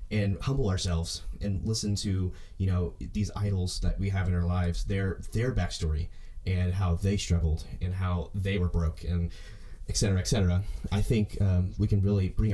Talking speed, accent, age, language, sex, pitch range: 190 wpm, American, 20-39, English, male, 85-100 Hz